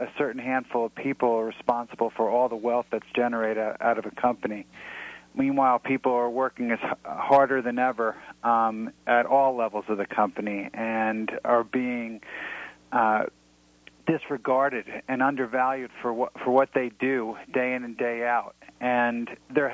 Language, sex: English, male